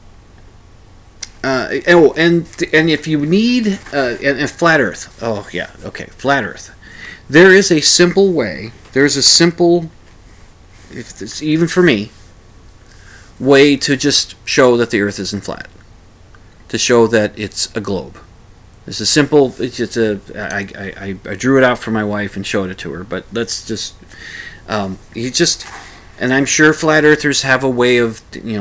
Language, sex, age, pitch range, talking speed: English, male, 40-59, 95-130 Hz, 170 wpm